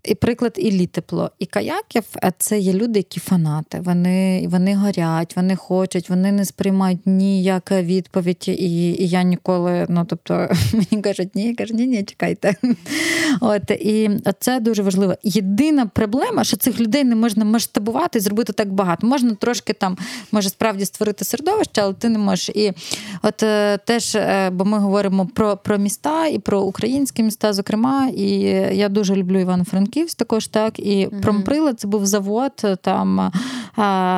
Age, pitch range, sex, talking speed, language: 20-39, 195-235 Hz, female, 165 wpm, Ukrainian